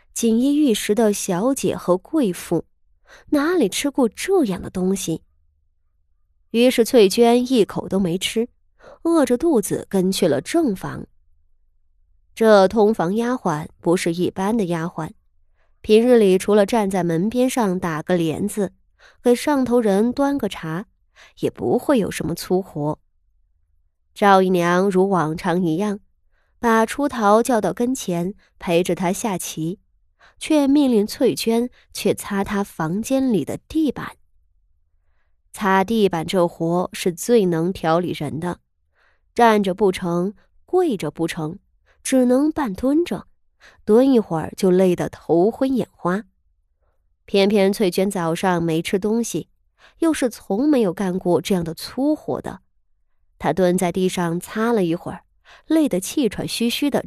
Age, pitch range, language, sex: 20-39, 165-230 Hz, Chinese, female